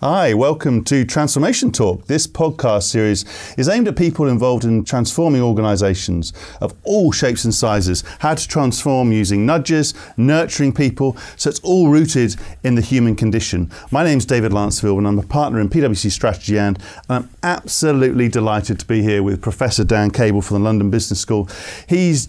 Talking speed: 170 wpm